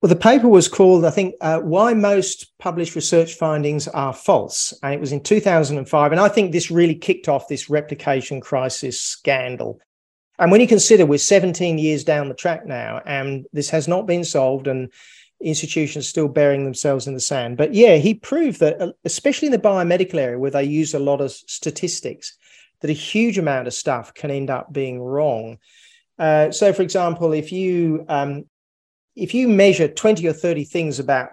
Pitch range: 140-175 Hz